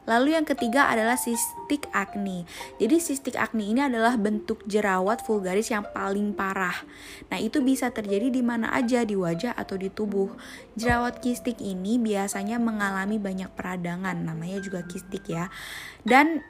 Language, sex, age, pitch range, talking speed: Indonesian, female, 20-39, 195-240 Hz, 150 wpm